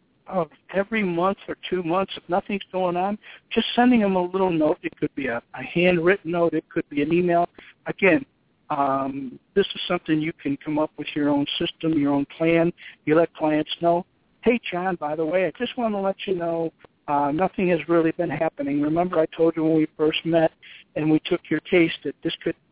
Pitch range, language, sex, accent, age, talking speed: 160-215 Hz, English, male, American, 60-79, 215 wpm